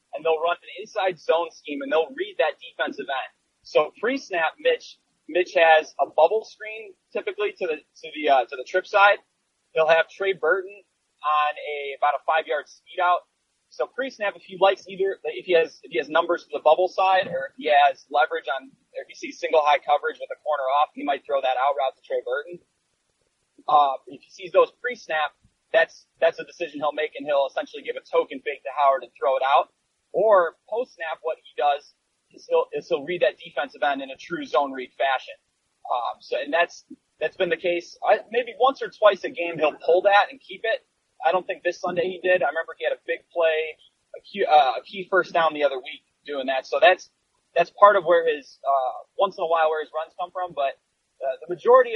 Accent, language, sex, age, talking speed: American, English, male, 20-39, 230 wpm